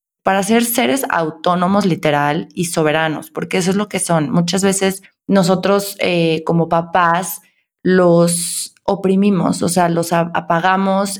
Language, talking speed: Spanish, 135 wpm